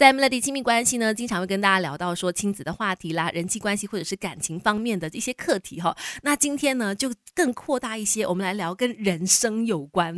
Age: 20-39